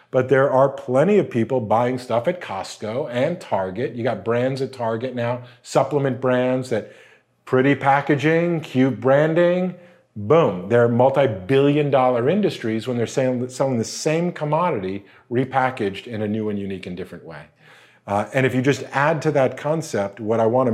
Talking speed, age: 170 wpm, 40-59